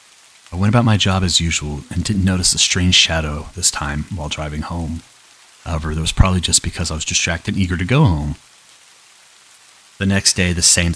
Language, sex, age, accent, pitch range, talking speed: English, male, 30-49, American, 80-100 Hz, 205 wpm